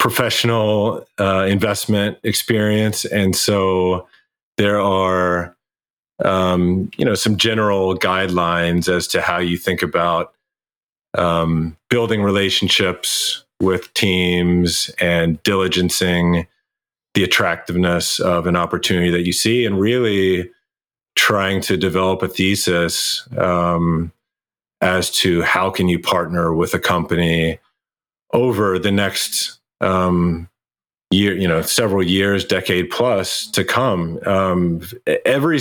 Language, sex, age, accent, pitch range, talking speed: English, male, 30-49, American, 90-100 Hz, 115 wpm